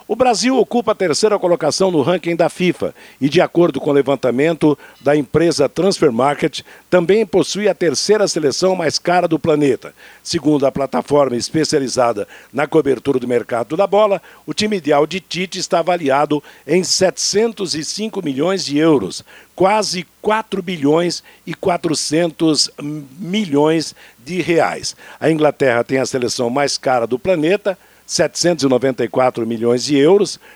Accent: Brazilian